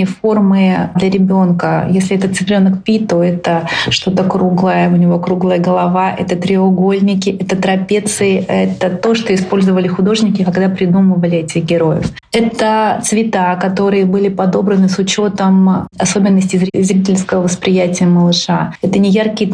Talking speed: 130 wpm